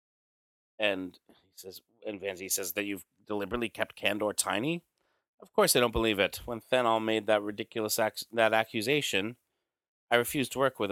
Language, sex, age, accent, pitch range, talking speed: English, male, 30-49, American, 100-115 Hz, 170 wpm